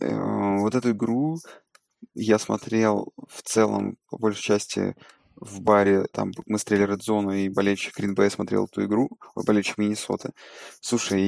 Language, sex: Russian, male